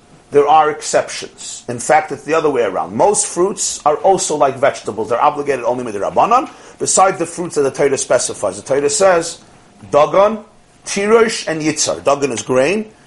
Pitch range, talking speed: 130-185 Hz, 175 wpm